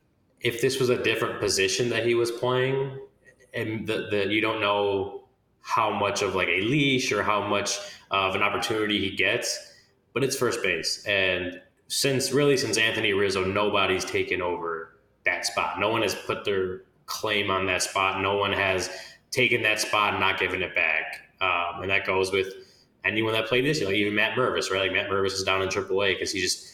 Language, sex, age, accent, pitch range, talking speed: English, male, 20-39, American, 95-115 Hz, 200 wpm